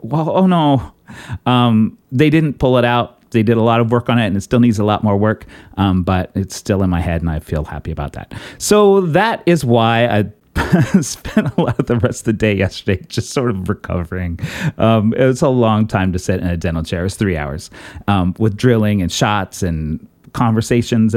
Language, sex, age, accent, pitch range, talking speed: English, male, 30-49, American, 100-125 Hz, 225 wpm